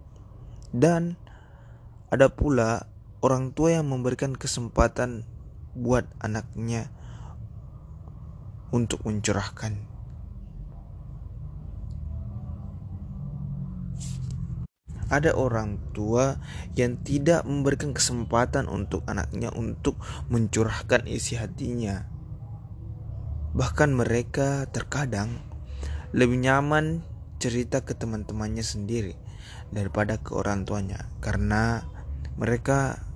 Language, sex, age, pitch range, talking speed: Indonesian, male, 20-39, 100-120 Hz, 70 wpm